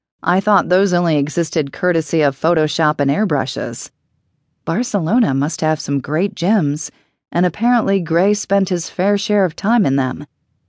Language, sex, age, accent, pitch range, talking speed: English, female, 40-59, American, 160-220 Hz, 150 wpm